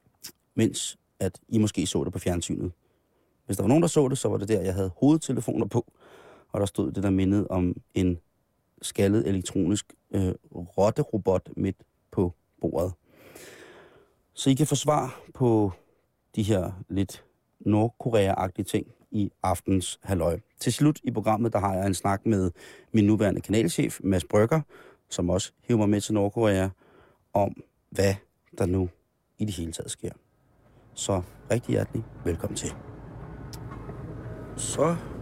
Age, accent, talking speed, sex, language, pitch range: 30-49, native, 150 wpm, male, Danish, 100-125 Hz